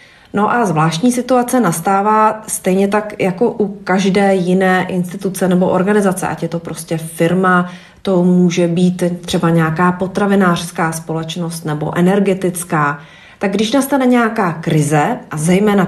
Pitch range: 175-210 Hz